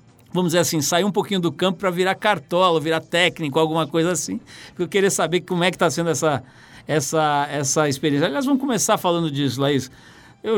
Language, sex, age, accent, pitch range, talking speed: Portuguese, male, 60-79, Brazilian, 135-170 Hz, 195 wpm